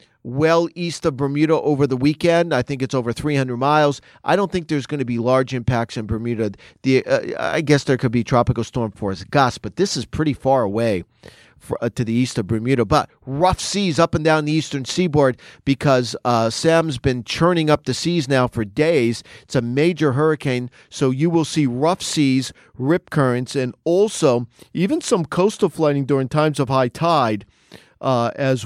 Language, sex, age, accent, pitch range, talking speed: English, male, 40-59, American, 125-160 Hz, 195 wpm